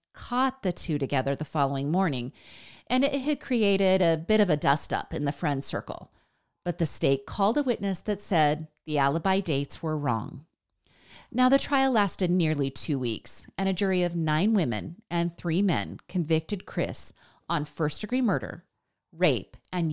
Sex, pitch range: female, 150-215 Hz